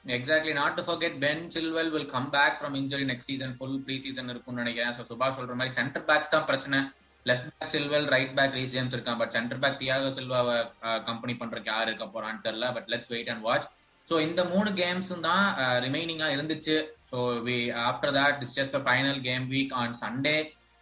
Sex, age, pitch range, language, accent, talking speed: male, 20-39, 125-150 Hz, Tamil, native, 210 wpm